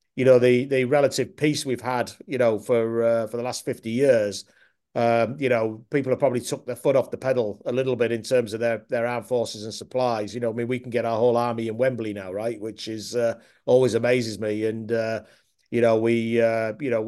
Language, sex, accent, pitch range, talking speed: English, male, British, 115-125 Hz, 245 wpm